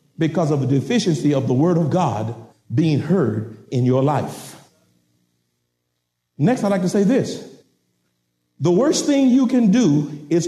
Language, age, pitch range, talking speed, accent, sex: English, 50-69, 145-205 Hz, 155 wpm, American, male